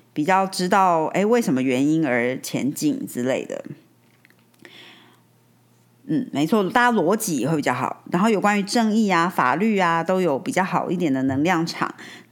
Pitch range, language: 160-210 Hz, Chinese